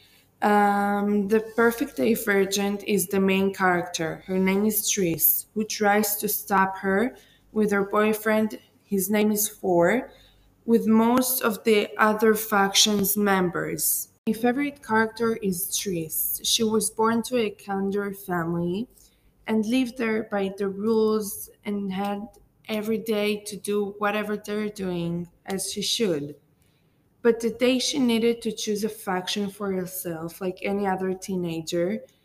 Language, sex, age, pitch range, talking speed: English, female, 20-39, 185-215 Hz, 140 wpm